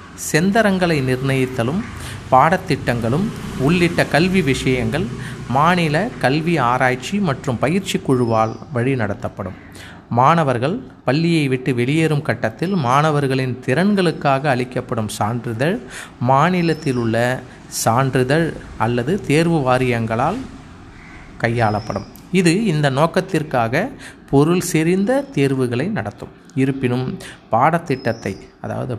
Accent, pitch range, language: native, 120-160 Hz, Tamil